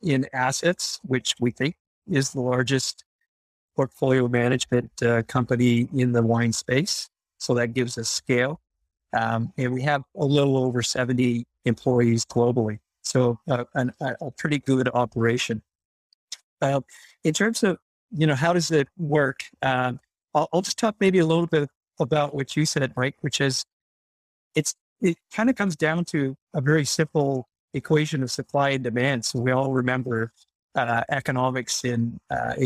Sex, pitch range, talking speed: male, 125-150 Hz, 160 wpm